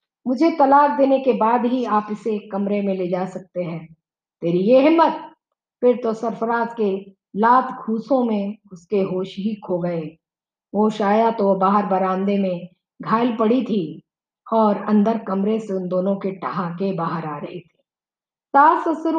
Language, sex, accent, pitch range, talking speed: Hindi, female, native, 190-260 Hz, 155 wpm